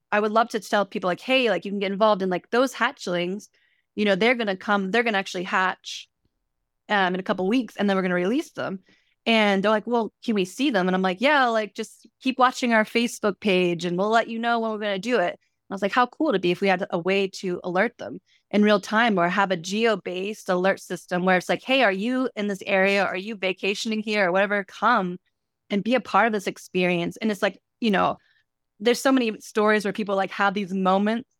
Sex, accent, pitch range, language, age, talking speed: female, American, 190-225 Hz, English, 20-39, 260 wpm